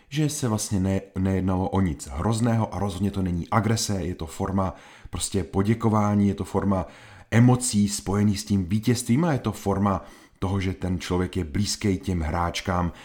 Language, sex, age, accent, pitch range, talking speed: Czech, male, 30-49, native, 90-115 Hz, 175 wpm